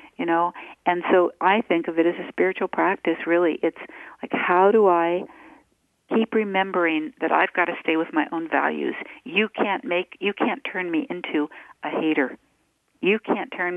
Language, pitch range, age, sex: English, 160-215 Hz, 60-79, female